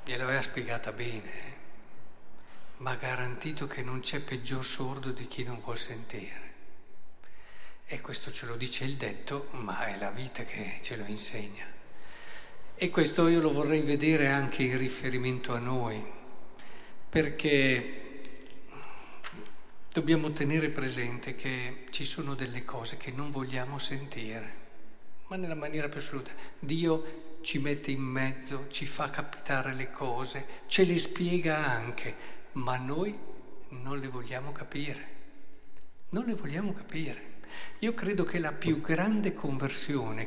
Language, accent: Italian, native